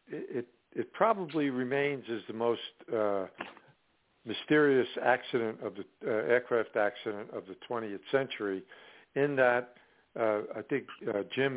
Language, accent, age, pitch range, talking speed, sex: English, American, 60-79, 105-120 Hz, 135 wpm, male